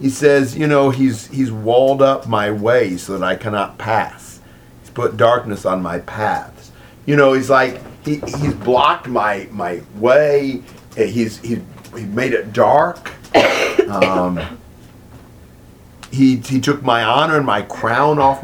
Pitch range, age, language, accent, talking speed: 110-140 Hz, 50-69, English, American, 155 wpm